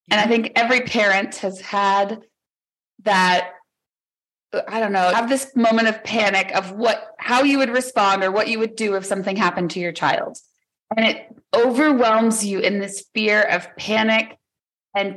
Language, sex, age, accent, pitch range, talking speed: English, female, 30-49, American, 185-230 Hz, 170 wpm